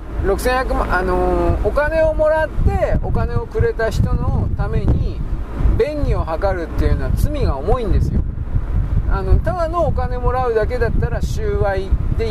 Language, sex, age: Japanese, male, 40-59